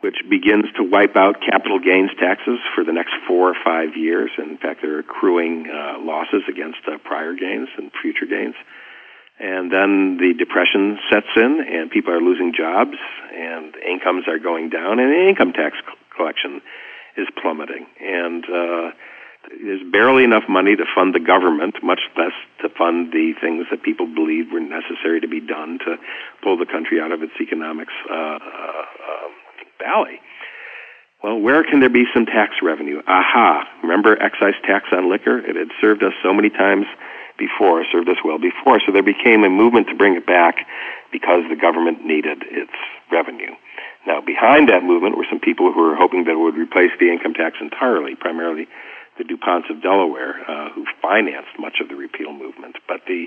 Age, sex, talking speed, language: 50-69, male, 180 wpm, English